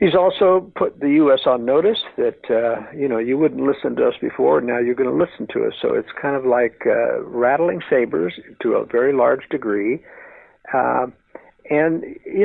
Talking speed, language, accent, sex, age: 195 wpm, English, American, male, 60-79